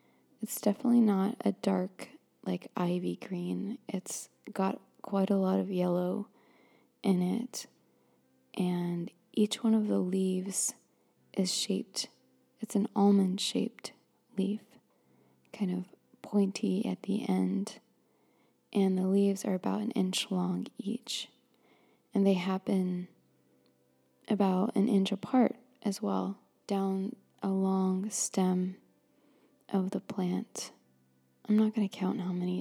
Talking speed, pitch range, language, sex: 120 wpm, 185-225 Hz, English, female